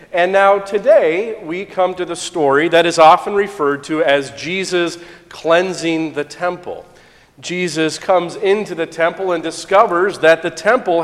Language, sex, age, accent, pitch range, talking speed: English, male, 40-59, American, 155-185 Hz, 150 wpm